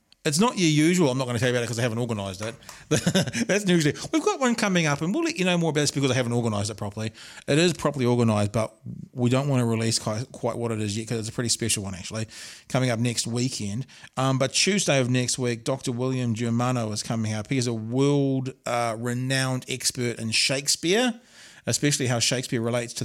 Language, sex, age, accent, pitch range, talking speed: English, male, 40-59, Australian, 110-140 Hz, 230 wpm